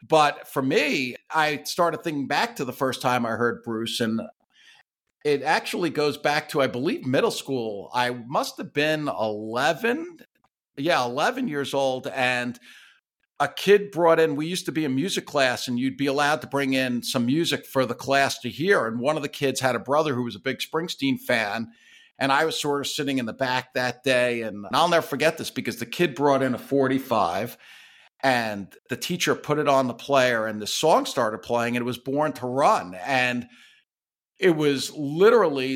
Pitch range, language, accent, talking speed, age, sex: 125-155 Hz, English, American, 200 wpm, 50-69, male